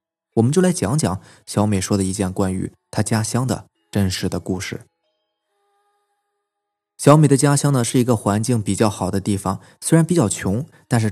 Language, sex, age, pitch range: Chinese, male, 20-39, 105-155 Hz